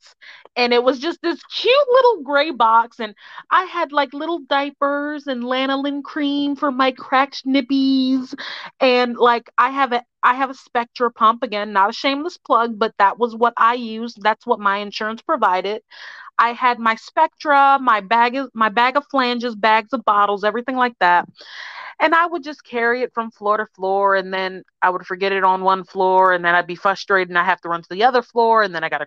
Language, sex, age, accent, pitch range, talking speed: English, female, 30-49, American, 200-265 Hz, 210 wpm